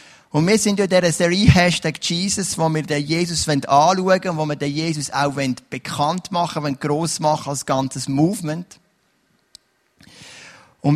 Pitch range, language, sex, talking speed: 140-185 Hz, German, male, 160 wpm